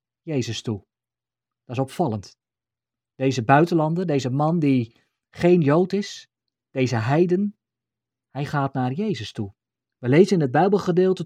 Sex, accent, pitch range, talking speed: male, Dutch, 120-165 Hz, 135 wpm